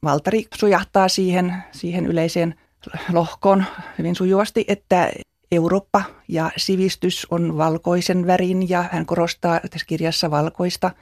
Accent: native